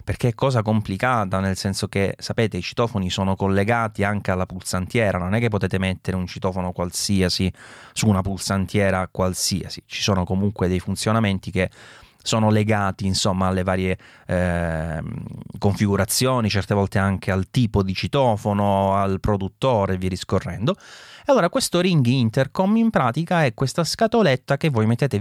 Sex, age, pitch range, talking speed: male, 30-49, 95-120 Hz, 150 wpm